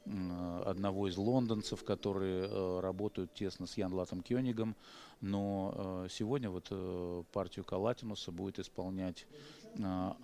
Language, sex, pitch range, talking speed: Russian, male, 95-115 Hz, 115 wpm